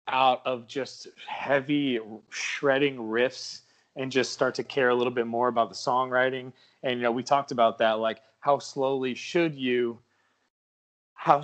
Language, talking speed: English, 165 wpm